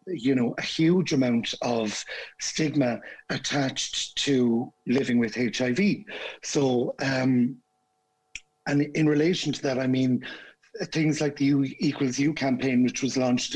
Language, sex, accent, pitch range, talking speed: English, male, Irish, 125-145 Hz, 135 wpm